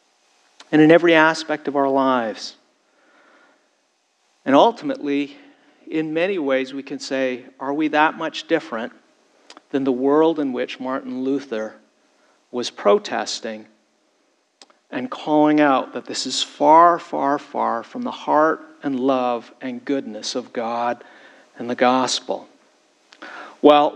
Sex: male